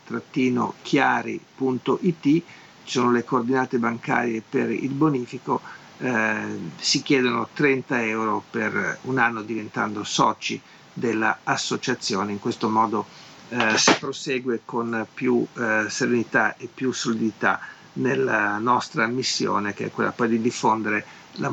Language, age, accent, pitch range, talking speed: Italian, 50-69, native, 115-150 Hz, 125 wpm